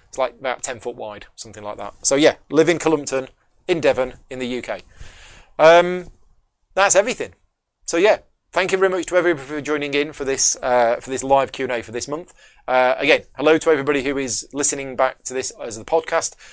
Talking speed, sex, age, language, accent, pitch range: 200 wpm, male, 30-49, English, British, 125-160 Hz